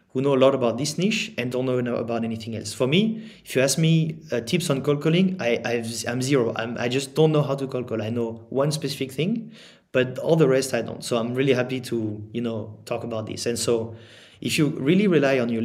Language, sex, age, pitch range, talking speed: English, male, 30-49, 115-145 Hz, 240 wpm